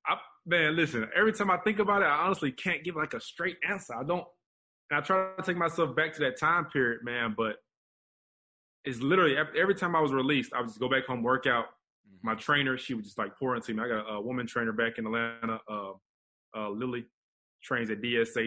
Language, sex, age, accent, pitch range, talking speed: English, male, 20-39, American, 110-135 Hz, 235 wpm